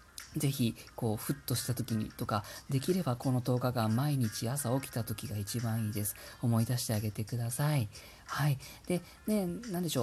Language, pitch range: Japanese, 120-185 Hz